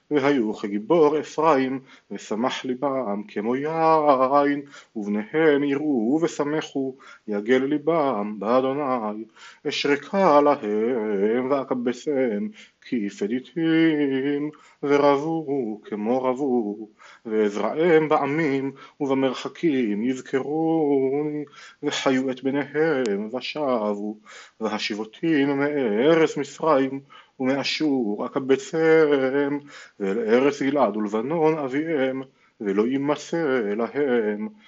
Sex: male